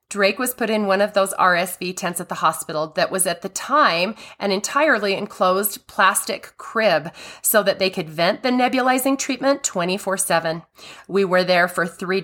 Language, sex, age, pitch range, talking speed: English, female, 30-49, 185-255 Hz, 175 wpm